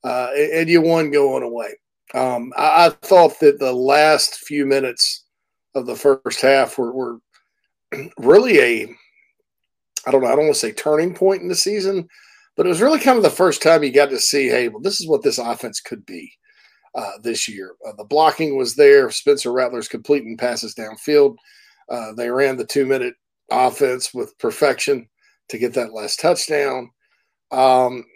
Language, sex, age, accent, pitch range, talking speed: English, male, 40-59, American, 130-195 Hz, 175 wpm